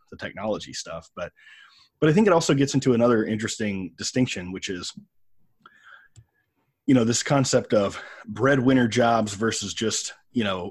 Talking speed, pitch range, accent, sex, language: 150 wpm, 100-130 Hz, American, male, English